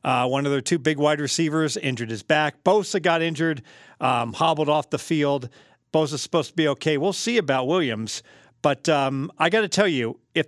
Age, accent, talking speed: 50-69, American, 205 wpm